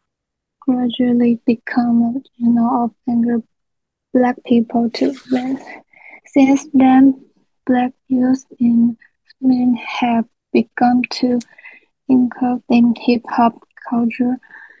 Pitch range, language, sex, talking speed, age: 240-260 Hz, English, female, 95 wpm, 20-39